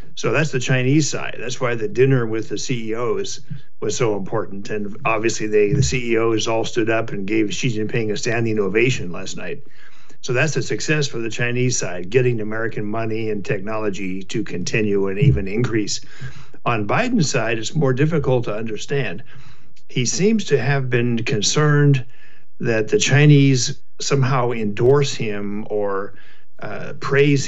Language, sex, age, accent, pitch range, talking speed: English, male, 50-69, American, 110-140 Hz, 160 wpm